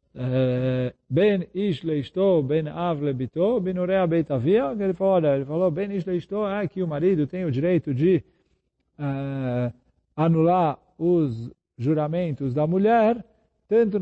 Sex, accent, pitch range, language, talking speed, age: male, Brazilian, 150-190 Hz, Portuguese, 105 wpm, 50-69